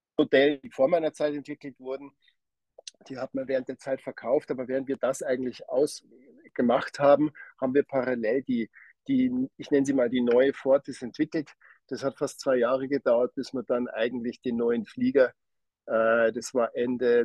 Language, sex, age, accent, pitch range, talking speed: German, male, 50-69, German, 120-140 Hz, 175 wpm